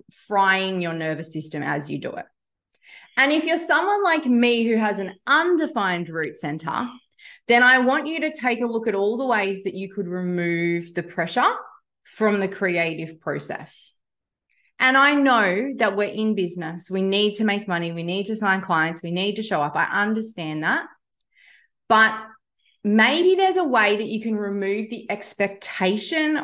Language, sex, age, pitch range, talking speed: English, female, 20-39, 180-225 Hz, 175 wpm